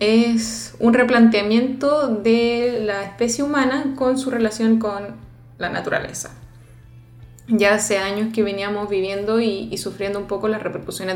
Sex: female